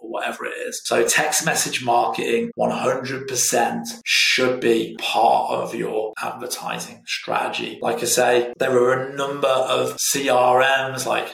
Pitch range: 115-130 Hz